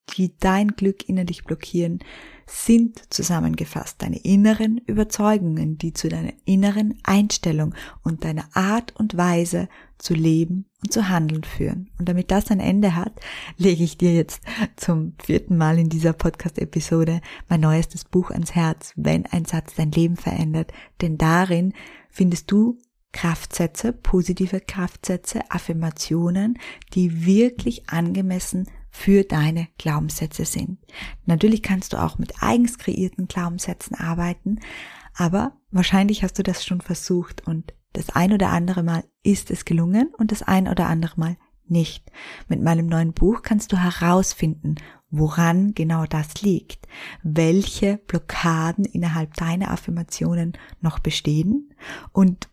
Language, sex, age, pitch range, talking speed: German, female, 20-39, 165-195 Hz, 135 wpm